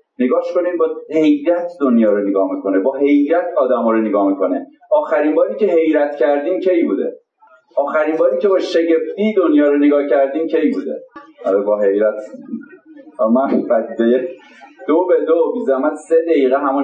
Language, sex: Persian, male